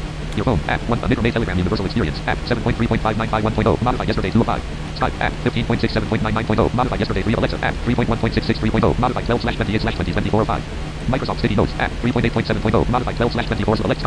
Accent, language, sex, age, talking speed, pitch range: American, English, male, 50-69, 295 wpm, 105-120 Hz